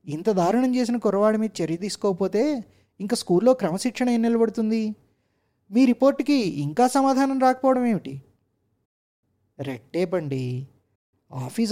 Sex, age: male, 20-39